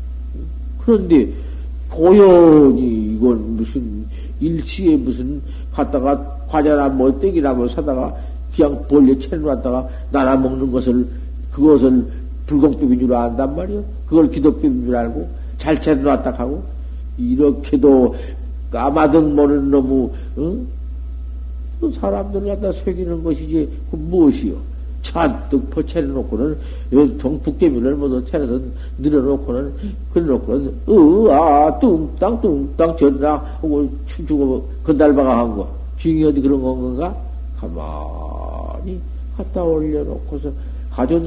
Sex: male